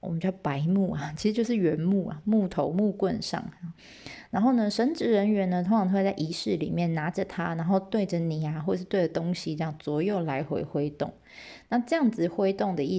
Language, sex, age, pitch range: Chinese, female, 20-39, 170-215 Hz